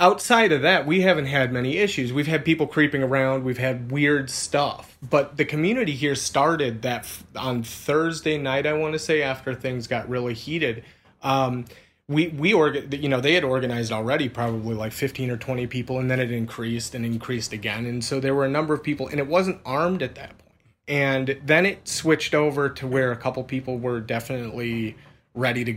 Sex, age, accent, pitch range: male, 30-49, American, 120-150 Hz